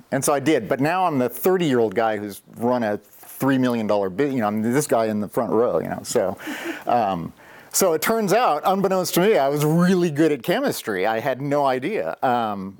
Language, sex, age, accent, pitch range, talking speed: English, male, 50-69, American, 115-160 Hz, 215 wpm